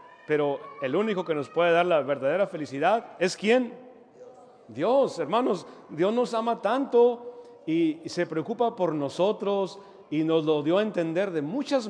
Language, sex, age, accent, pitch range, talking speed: Spanish, male, 40-59, Mexican, 155-205 Hz, 155 wpm